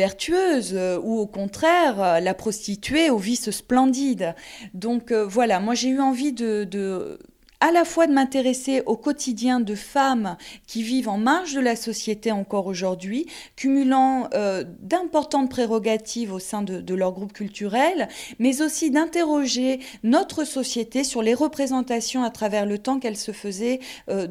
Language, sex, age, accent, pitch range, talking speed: French, female, 20-39, French, 210-265 Hz, 155 wpm